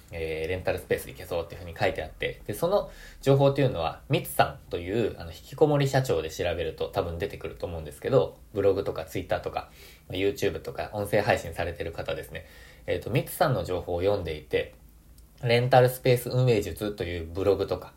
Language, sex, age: Japanese, male, 20-39